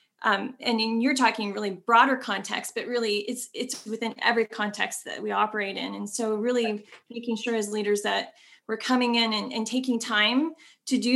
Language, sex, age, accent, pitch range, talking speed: English, female, 20-39, American, 210-245 Hz, 195 wpm